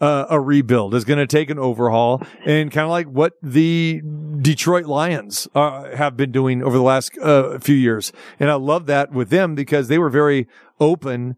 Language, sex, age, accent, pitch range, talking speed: English, male, 40-59, American, 140-165 Hz, 200 wpm